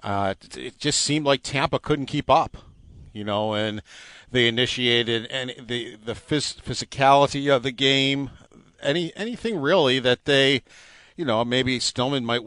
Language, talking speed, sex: English, 150 wpm, male